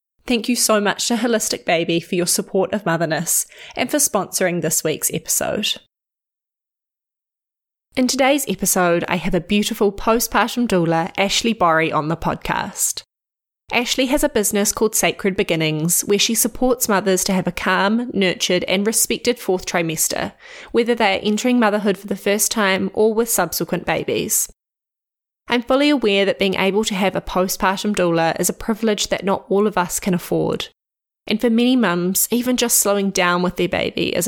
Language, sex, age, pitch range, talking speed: English, female, 20-39, 180-225 Hz, 170 wpm